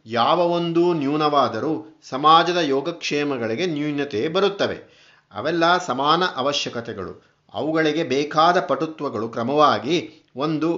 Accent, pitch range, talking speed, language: native, 130-165 Hz, 80 wpm, Kannada